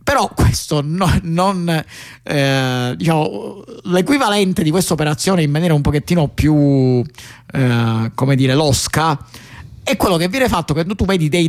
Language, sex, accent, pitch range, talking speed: Italian, male, native, 135-170 Hz, 145 wpm